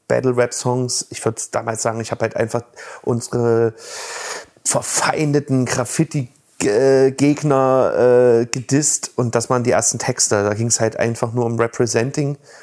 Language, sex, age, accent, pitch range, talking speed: German, male, 30-49, German, 120-145 Hz, 135 wpm